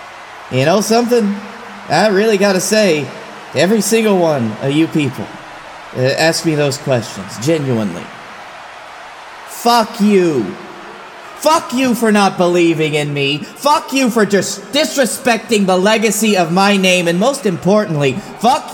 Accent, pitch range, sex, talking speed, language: American, 180-235 Hz, male, 135 wpm, English